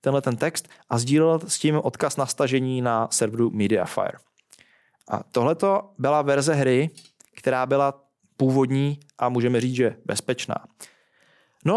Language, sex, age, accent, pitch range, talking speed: Czech, male, 20-39, native, 130-165 Hz, 140 wpm